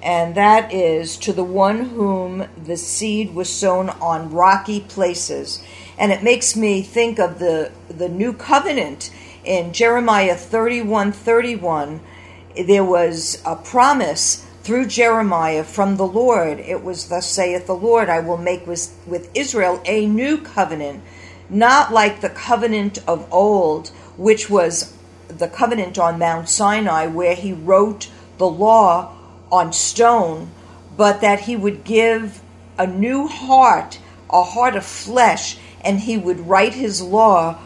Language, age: English, 50-69